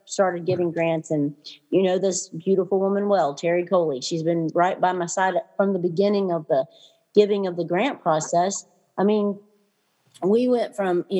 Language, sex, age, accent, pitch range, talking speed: English, female, 40-59, American, 160-185 Hz, 180 wpm